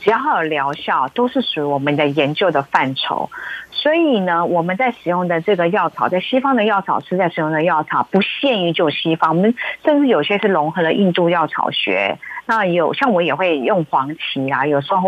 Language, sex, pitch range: Chinese, female, 160-205 Hz